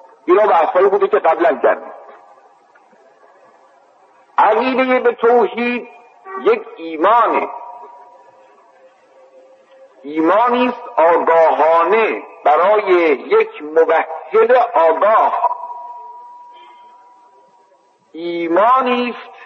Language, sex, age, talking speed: Persian, male, 50-69, 55 wpm